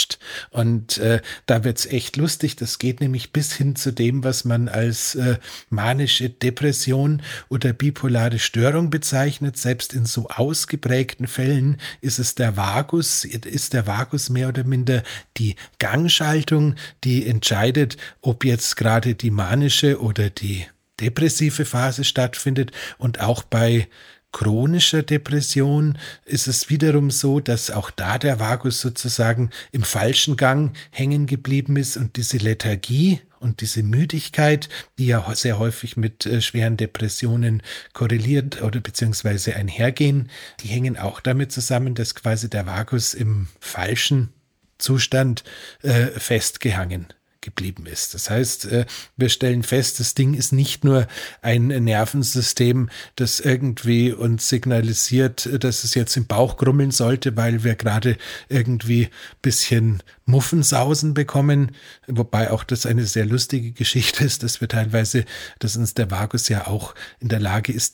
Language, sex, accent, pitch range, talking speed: German, male, German, 115-135 Hz, 140 wpm